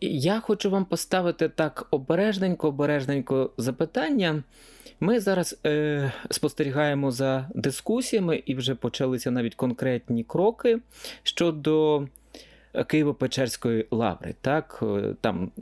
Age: 30-49